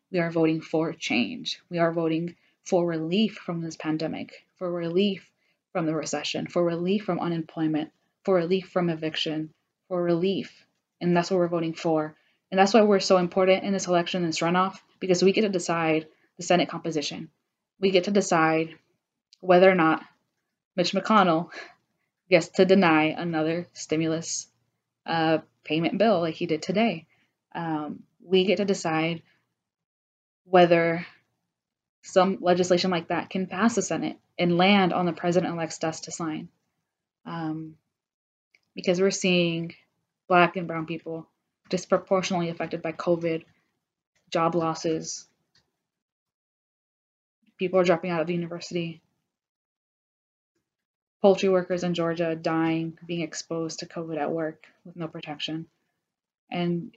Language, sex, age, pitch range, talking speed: English, female, 20-39, 160-185 Hz, 140 wpm